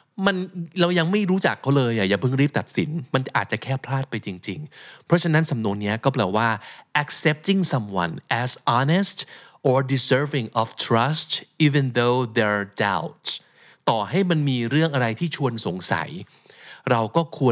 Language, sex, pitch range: Thai, male, 110-145 Hz